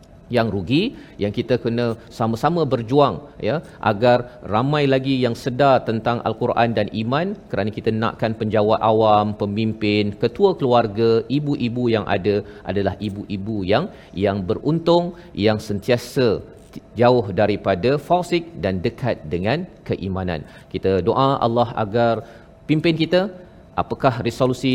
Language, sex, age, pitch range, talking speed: Malayalam, male, 40-59, 110-140 Hz, 120 wpm